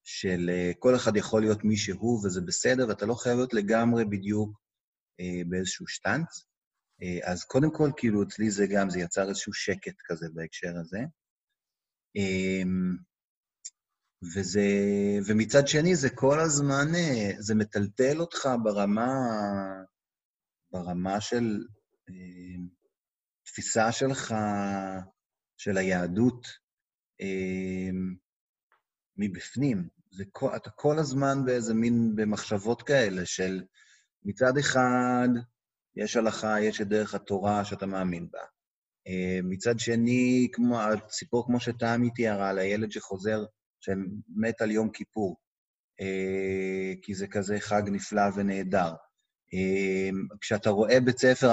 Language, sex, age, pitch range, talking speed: Hebrew, male, 30-49, 95-120 Hz, 110 wpm